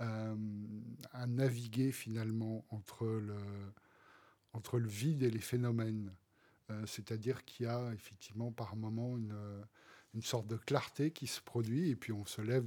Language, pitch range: French, 105-125 Hz